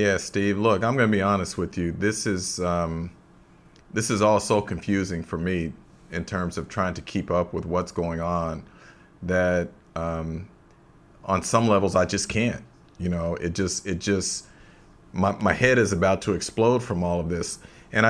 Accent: American